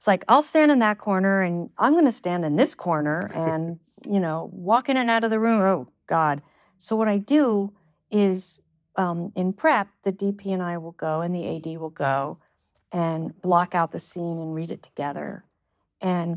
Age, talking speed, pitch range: 50-69, 205 wpm, 170-205 Hz